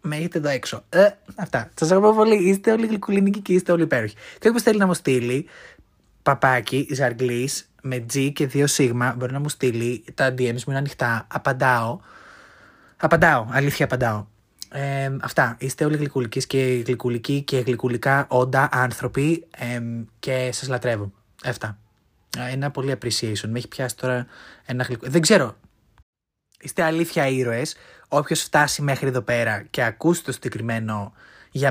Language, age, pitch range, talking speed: Greek, 20-39, 120-145 Hz, 155 wpm